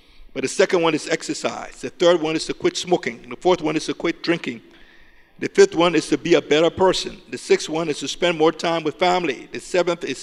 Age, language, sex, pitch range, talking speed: 50-69, English, male, 140-175 Hz, 245 wpm